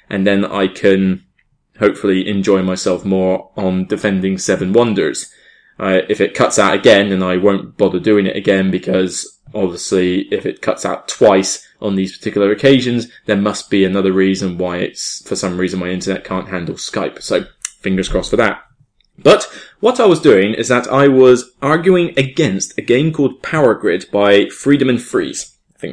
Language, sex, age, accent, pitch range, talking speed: English, male, 20-39, British, 100-140 Hz, 180 wpm